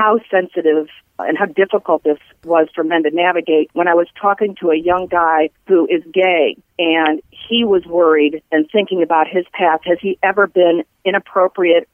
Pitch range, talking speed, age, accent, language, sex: 170-215 Hz, 180 wpm, 50-69, American, English, female